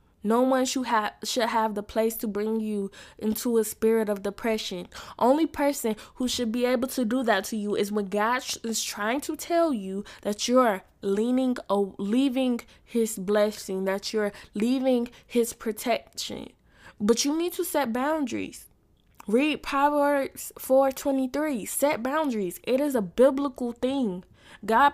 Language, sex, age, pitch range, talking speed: English, female, 10-29, 210-260 Hz, 150 wpm